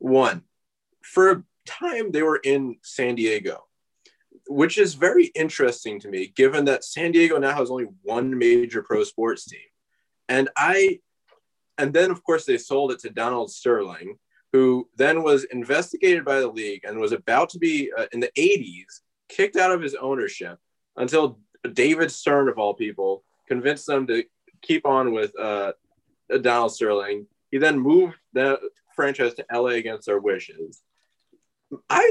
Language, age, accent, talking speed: English, 20-39, American, 160 wpm